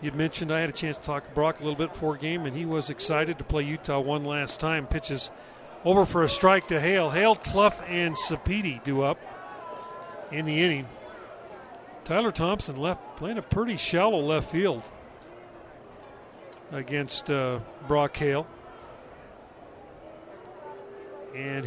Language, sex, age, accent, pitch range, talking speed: English, male, 40-59, American, 145-175 Hz, 150 wpm